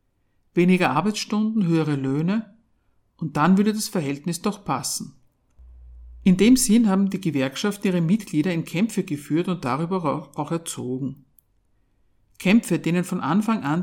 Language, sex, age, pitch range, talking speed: German, male, 50-69, 140-200 Hz, 135 wpm